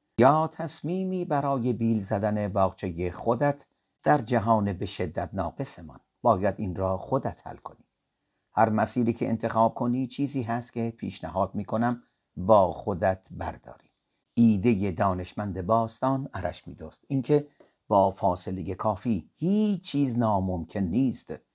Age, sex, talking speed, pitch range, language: 50-69, male, 125 wpm, 95-130 Hz, Persian